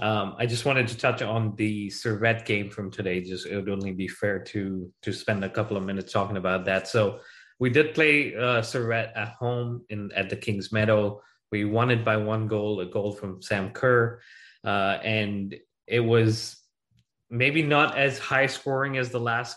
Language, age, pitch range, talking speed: English, 20-39, 100-115 Hz, 195 wpm